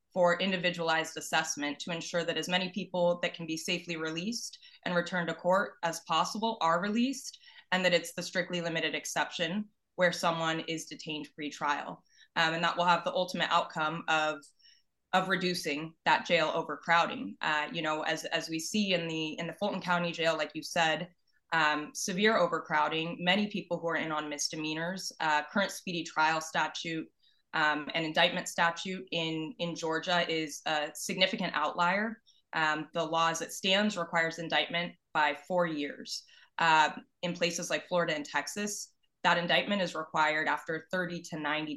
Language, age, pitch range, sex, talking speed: English, 20-39, 155-180 Hz, female, 170 wpm